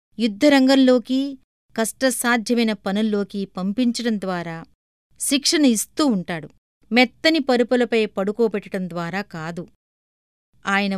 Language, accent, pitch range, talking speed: Telugu, native, 195-245 Hz, 75 wpm